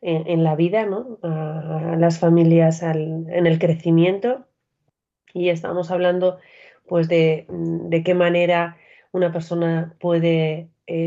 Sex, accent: female, Spanish